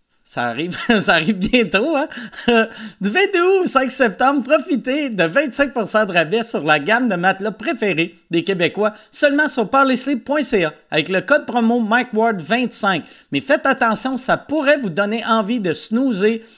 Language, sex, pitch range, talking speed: French, male, 200-260 Hz, 150 wpm